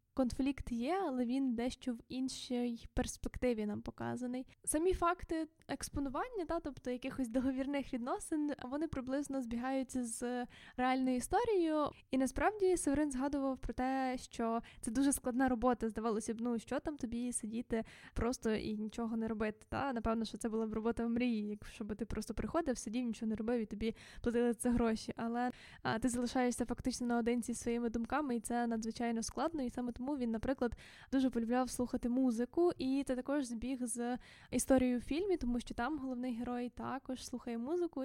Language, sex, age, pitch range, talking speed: Ukrainian, female, 10-29, 240-275 Hz, 170 wpm